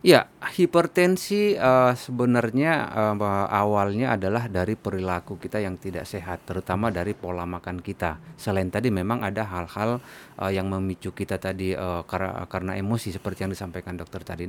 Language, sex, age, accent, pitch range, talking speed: Indonesian, male, 30-49, native, 95-130 Hz, 150 wpm